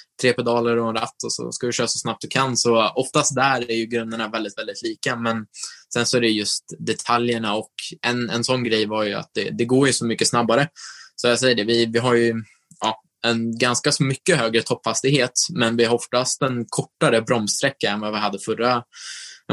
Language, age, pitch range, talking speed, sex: Swedish, 20-39, 110-130 Hz, 220 wpm, male